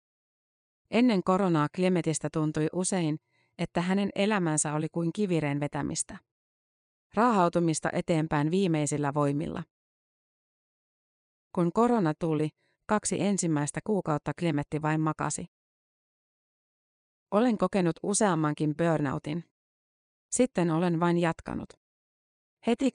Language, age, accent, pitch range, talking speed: Finnish, 30-49, native, 155-185 Hz, 90 wpm